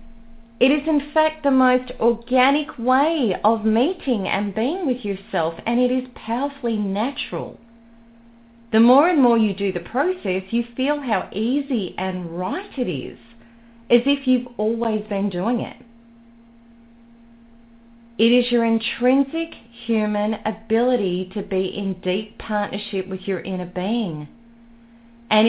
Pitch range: 215-250 Hz